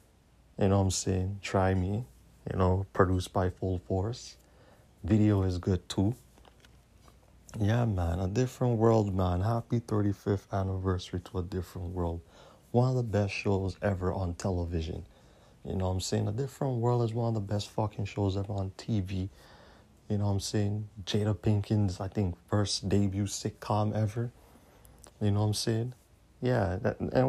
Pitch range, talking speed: 95-115 Hz, 170 wpm